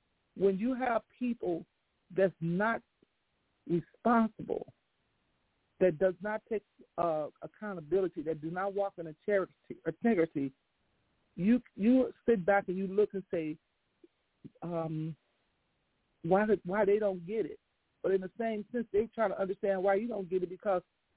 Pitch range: 175-210 Hz